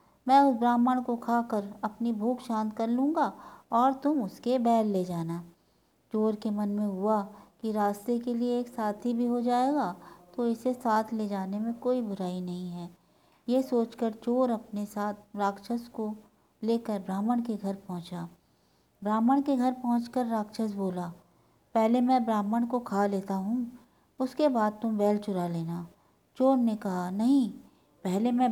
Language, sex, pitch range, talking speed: Hindi, female, 205-245 Hz, 165 wpm